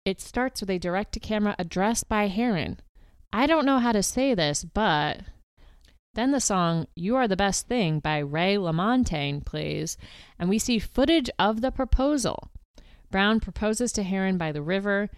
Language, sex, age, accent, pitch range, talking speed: English, female, 30-49, American, 155-205 Hz, 165 wpm